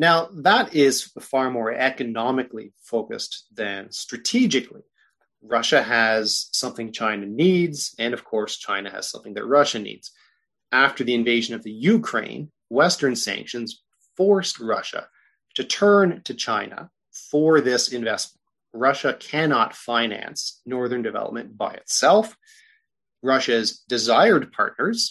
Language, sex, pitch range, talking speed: English, male, 115-155 Hz, 120 wpm